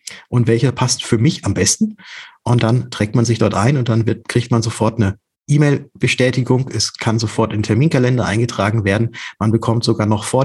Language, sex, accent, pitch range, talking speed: German, male, German, 110-130 Hz, 200 wpm